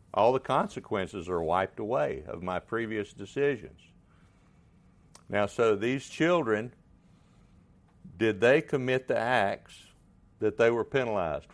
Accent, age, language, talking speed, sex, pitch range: American, 60-79, English, 120 wpm, male, 95-130 Hz